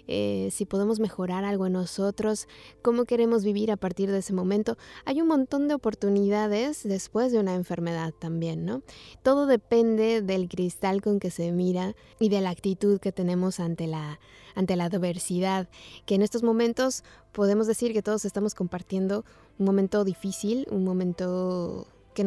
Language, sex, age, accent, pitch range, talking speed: Spanish, female, 20-39, Mexican, 185-215 Hz, 160 wpm